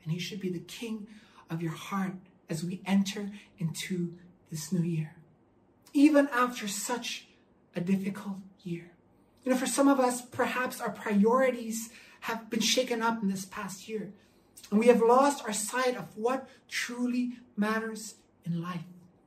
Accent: American